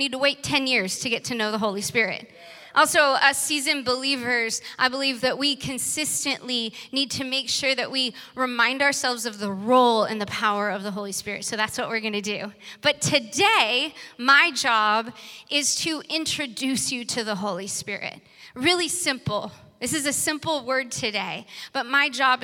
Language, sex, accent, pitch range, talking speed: English, female, American, 220-275 Hz, 185 wpm